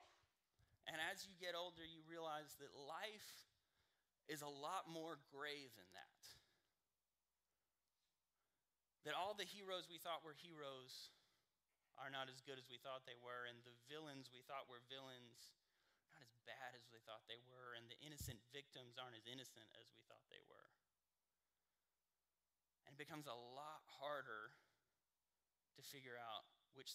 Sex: male